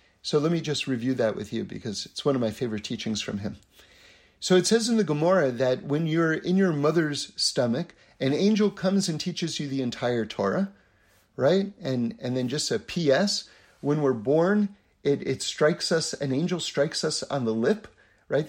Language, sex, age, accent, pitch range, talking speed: English, male, 50-69, American, 105-160 Hz, 200 wpm